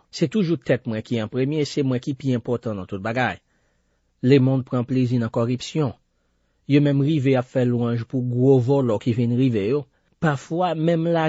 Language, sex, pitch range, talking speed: French, male, 120-150 Hz, 215 wpm